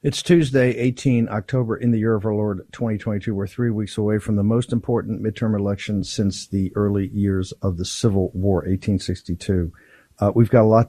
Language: English